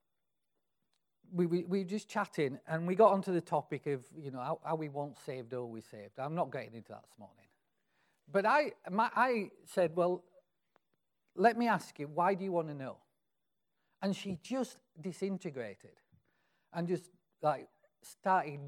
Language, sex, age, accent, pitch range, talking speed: English, male, 40-59, British, 160-220 Hz, 165 wpm